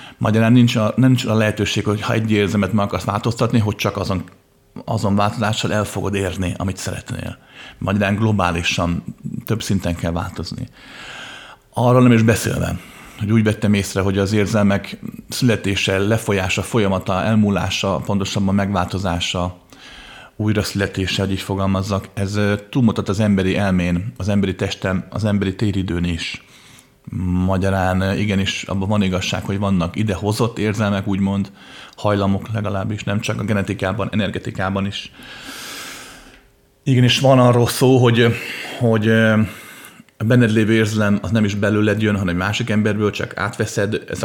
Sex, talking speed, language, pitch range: male, 140 wpm, Hungarian, 95-110 Hz